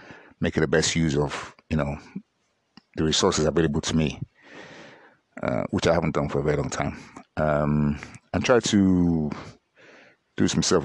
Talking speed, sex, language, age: 165 wpm, male, English, 60-79